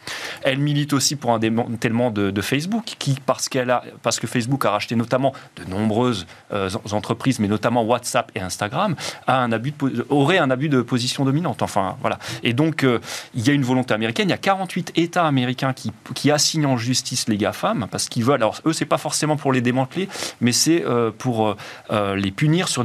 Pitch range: 120-160 Hz